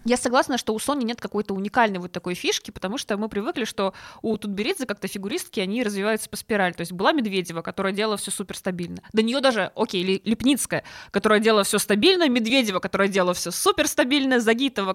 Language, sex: Russian, female